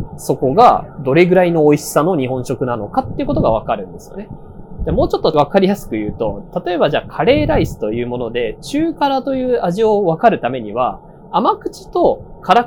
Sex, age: male, 20-39